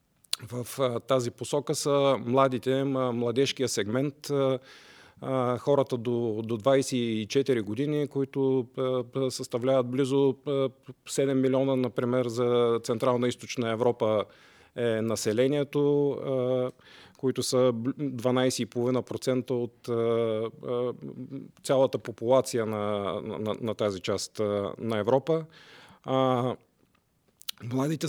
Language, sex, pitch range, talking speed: Bulgarian, male, 120-140 Hz, 85 wpm